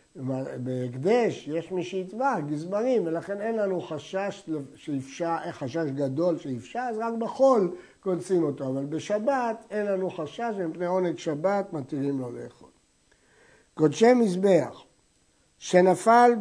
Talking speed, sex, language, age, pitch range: 115 wpm, male, Hebrew, 60-79, 155-215 Hz